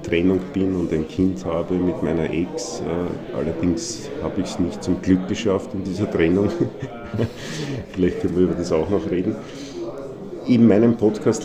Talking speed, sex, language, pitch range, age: 160 wpm, male, German, 85-95 Hz, 50-69